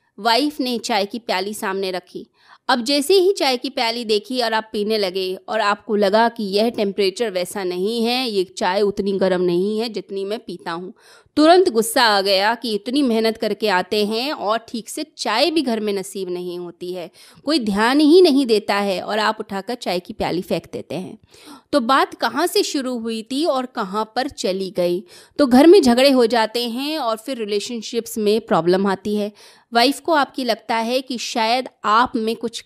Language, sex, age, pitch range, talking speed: Hindi, female, 20-39, 205-265 Hz, 200 wpm